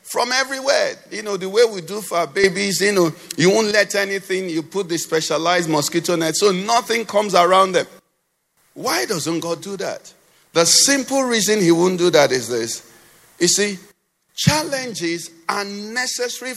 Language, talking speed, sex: English, 170 wpm, male